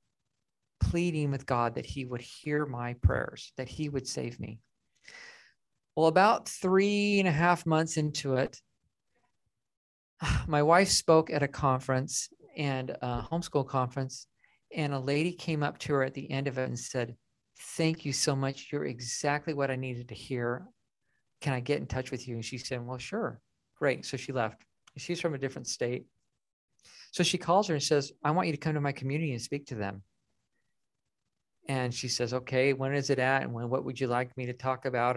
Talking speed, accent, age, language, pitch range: 195 wpm, American, 40-59, English, 130-160 Hz